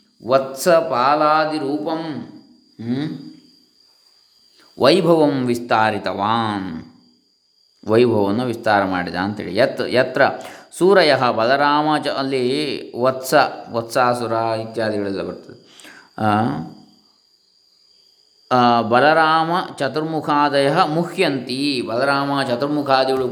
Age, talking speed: 20-39, 50 wpm